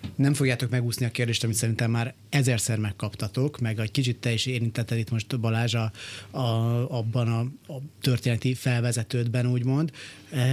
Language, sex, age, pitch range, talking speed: Hungarian, male, 30-49, 115-135 Hz, 160 wpm